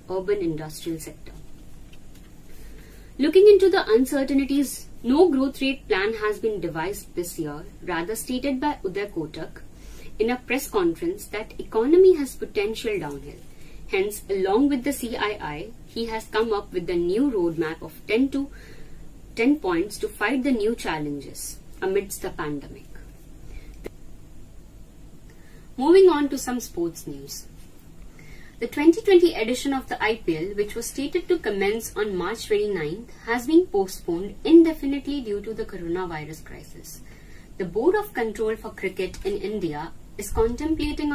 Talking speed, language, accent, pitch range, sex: 140 wpm, Hindi, native, 185-295 Hz, female